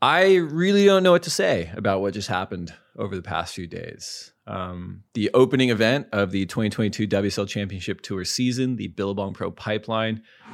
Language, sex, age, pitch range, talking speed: English, male, 30-49, 95-115 Hz, 175 wpm